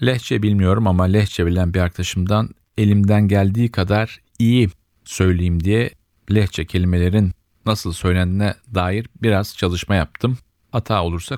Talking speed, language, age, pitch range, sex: 120 wpm, Turkish, 40-59, 90-110 Hz, male